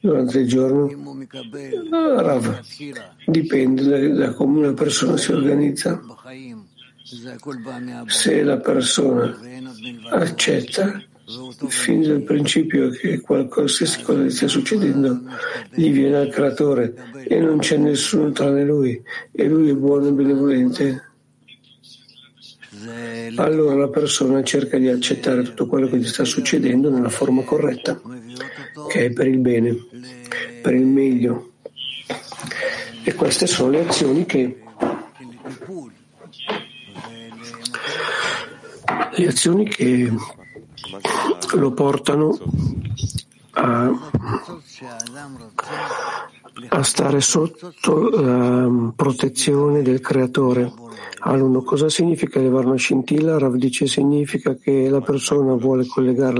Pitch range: 125-145 Hz